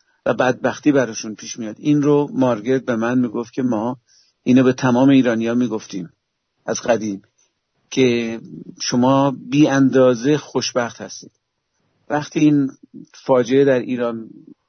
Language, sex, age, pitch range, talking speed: English, male, 50-69, 120-140 Hz, 125 wpm